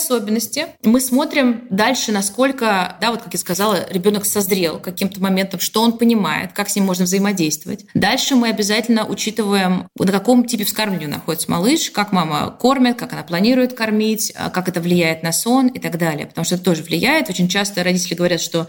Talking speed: 185 wpm